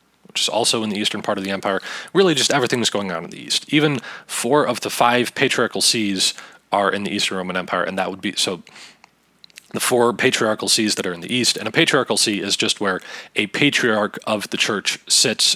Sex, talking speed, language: male, 230 wpm, English